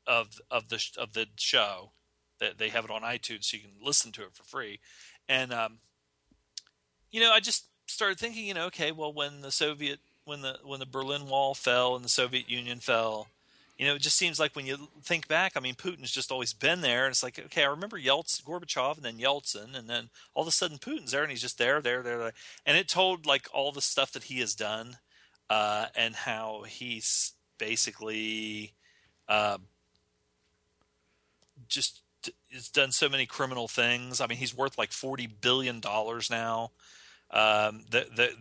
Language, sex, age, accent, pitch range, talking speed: English, male, 40-59, American, 110-135 Hz, 195 wpm